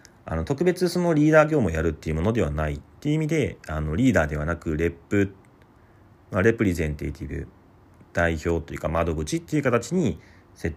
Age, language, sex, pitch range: 40-59, Japanese, male, 85-130 Hz